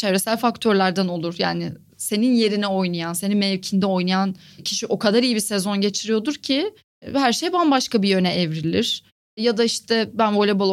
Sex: female